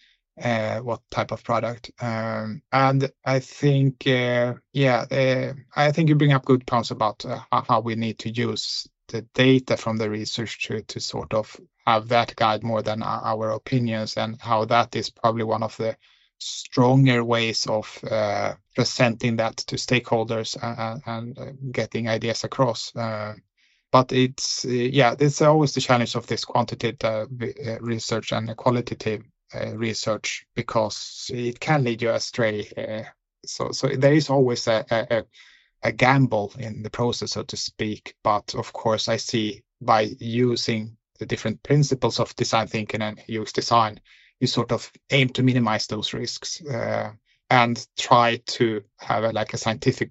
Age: 20-39